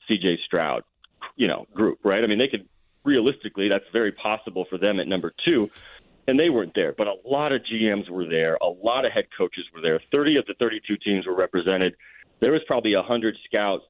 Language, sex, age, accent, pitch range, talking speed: English, male, 30-49, American, 95-120 Hz, 210 wpm